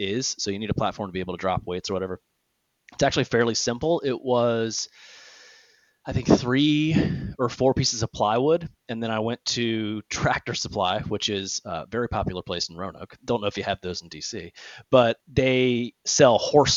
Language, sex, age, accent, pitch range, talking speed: English, male, 30-49, American, 100-120 Hz, 195 wpm